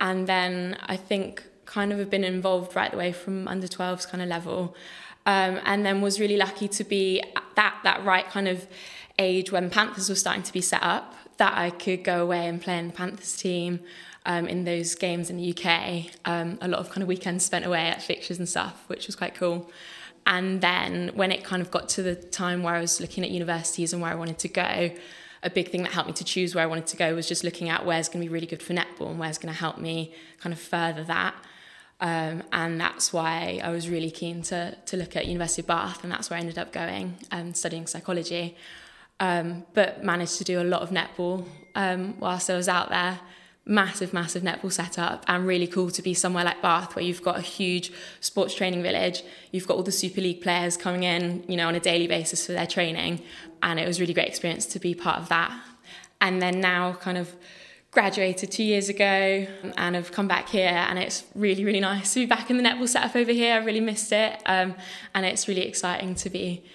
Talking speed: 235 wpm